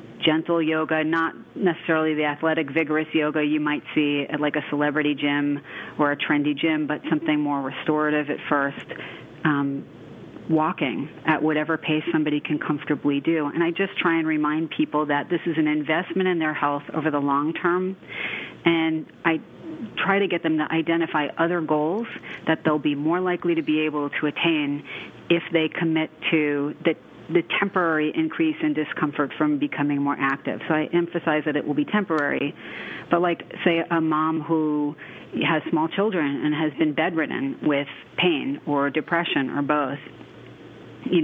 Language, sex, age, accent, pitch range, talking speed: English, female, 30-49, American, 150-165 Hz, 170 wpm